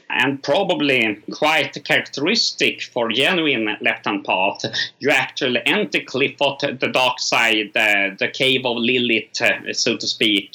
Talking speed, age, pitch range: 135 wpm, 30-49, 115-175 Hz